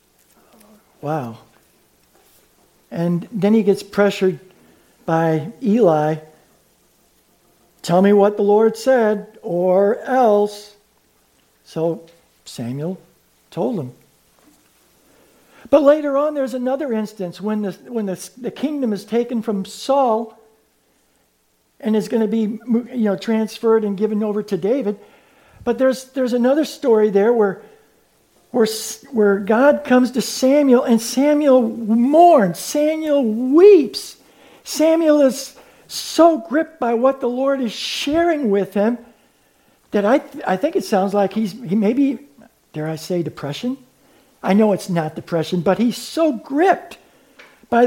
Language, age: English, 60-79